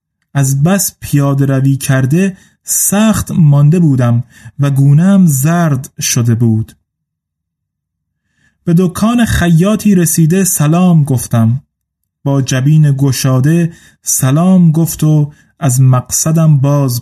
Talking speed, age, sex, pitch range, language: 100 wpm, 30-49, male, 130-180 Hz, Persian